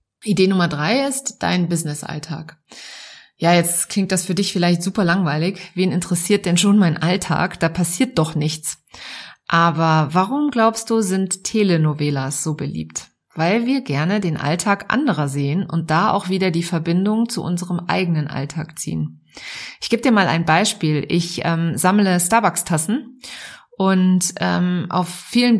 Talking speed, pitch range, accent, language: 150 wpm, 160-200 Hz, German, German